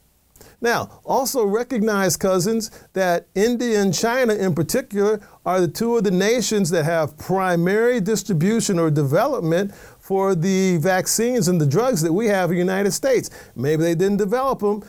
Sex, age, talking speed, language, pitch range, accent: male, 50-69, 160 wpm, English, 170-215 Hz, American